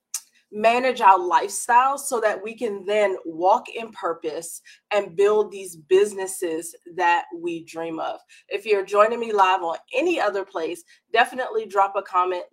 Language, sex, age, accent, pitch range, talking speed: English, female, 20-39, American, 185-265 Hz, 155 wpm